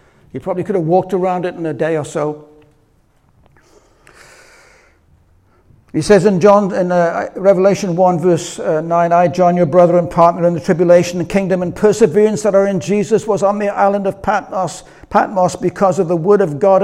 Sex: male